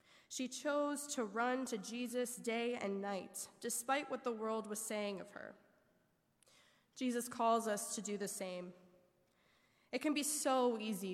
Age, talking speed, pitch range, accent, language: 10-29, 155 wpm, 200-250 Hz, American, English